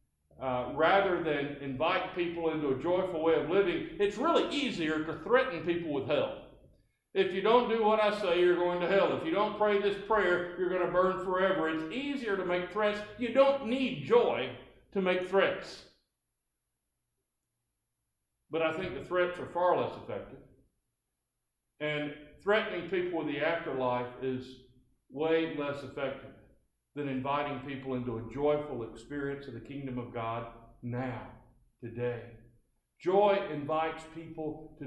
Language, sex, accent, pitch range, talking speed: English, male, American, 130-180 Hz, 155 wpm